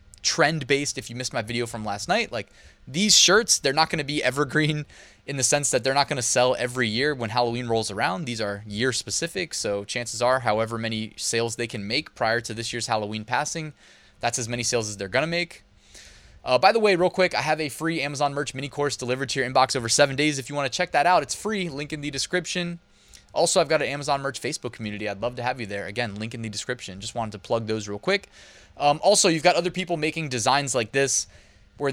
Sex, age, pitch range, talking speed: male, 20-39, 115-155 Hz, 240 wpm